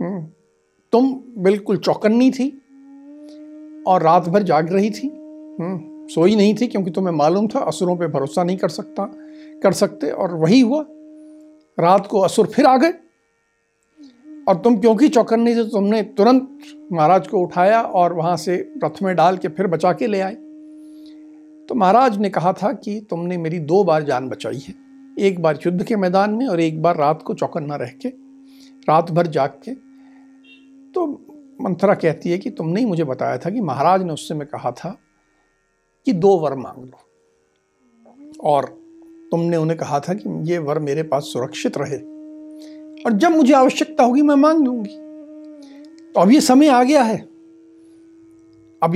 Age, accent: 60-79, native